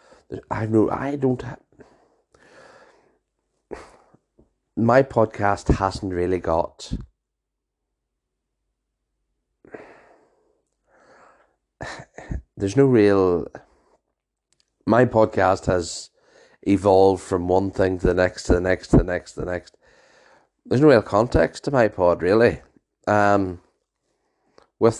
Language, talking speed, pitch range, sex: English, 100 wpm, 90-110 Hz, male